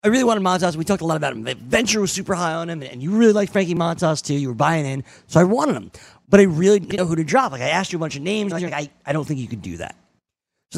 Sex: male